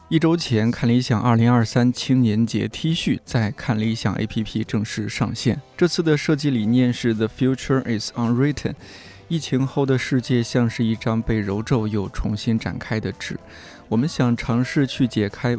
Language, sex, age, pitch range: Chinese, male, 20-39, 110-130 Hz